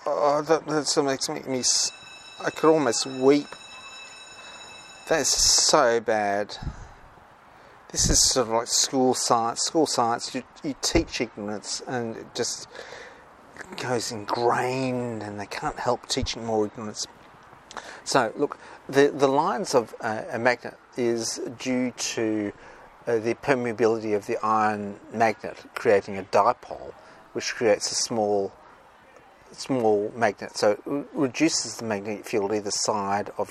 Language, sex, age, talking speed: English, male, 40-59, 135 wpm